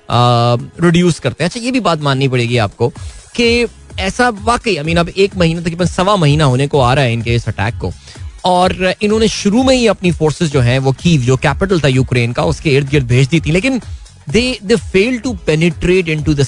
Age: 20-39